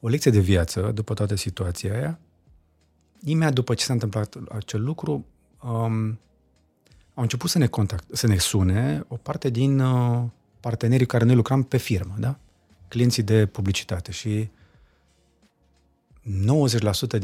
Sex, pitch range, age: male, 95-120 Hz, 30-49